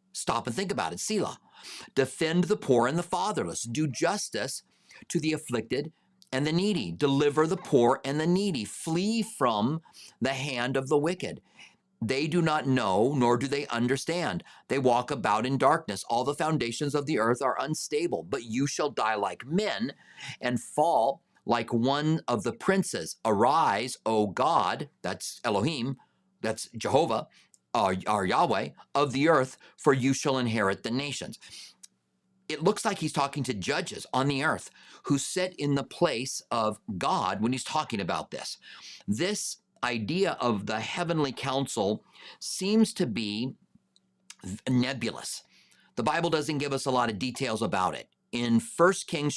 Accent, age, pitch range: American, 50-69, 120-165 Hz